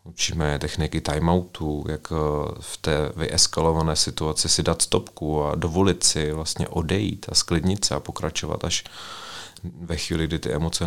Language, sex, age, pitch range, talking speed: Czech, male, 30-49, 80-90 Hz, 145 wpm